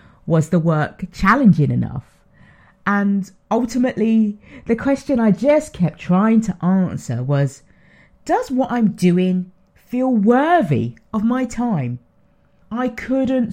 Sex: female